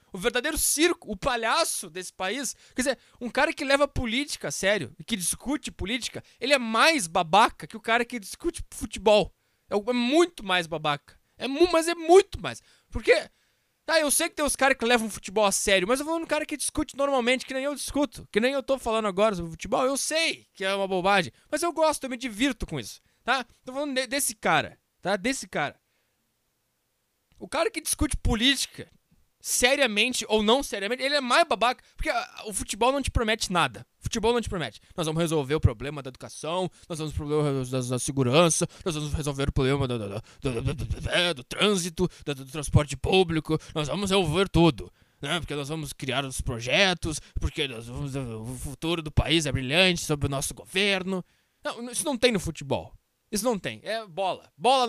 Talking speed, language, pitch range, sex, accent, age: 190 wpm, English, 160-265 Hz, male, Brazilian, 20-39